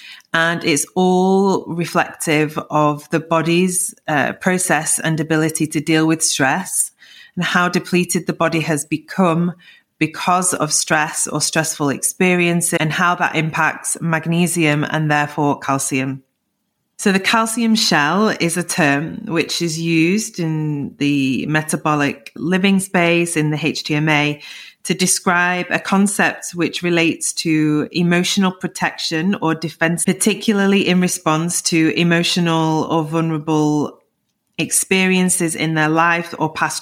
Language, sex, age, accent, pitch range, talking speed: English, female, 30-49, British, 155-185 Hz, 125 wpm